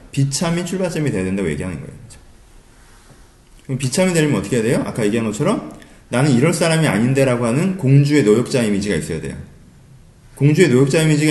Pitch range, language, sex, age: 115-175 Hz, Korean, male, 30-49